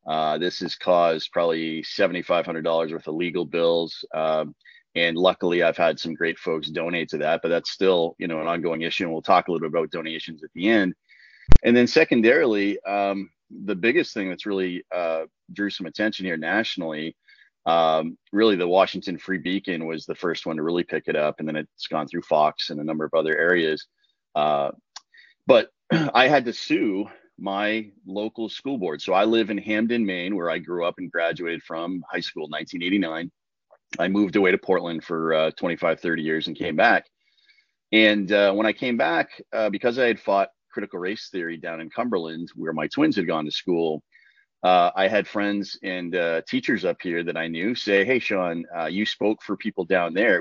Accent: American